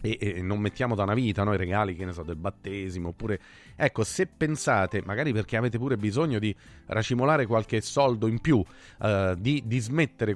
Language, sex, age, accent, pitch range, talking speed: Italian, male, 30-49, native, 110-155 Hz, 190 wpm